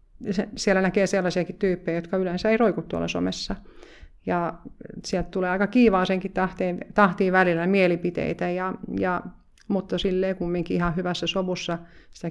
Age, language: 30-49, Finnish